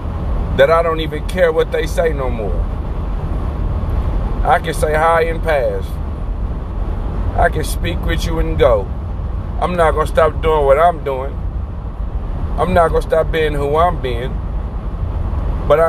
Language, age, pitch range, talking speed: English, 40-59, 80-95 Hz, 150 wpm